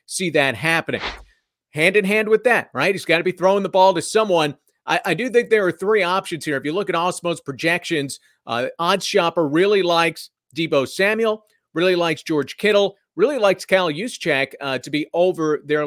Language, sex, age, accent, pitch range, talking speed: English, male, 40-59, American, 150-205 Hz, 200 wpm